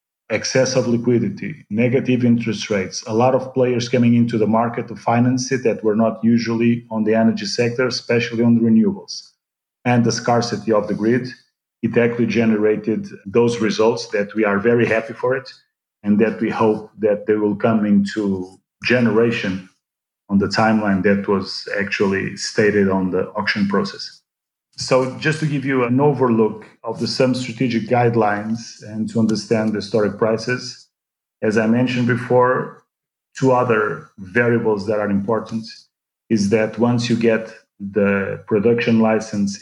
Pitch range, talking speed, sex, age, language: 105-120 Hz, 160 wpm, male, 40-59, English